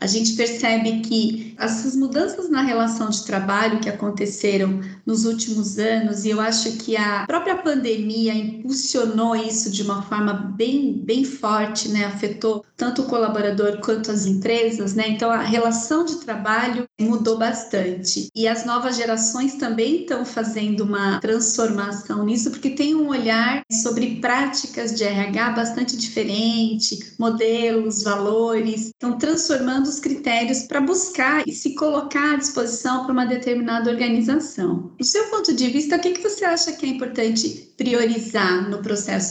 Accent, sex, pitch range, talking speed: Brazilian, female, 220-260 Hz, 150 wpm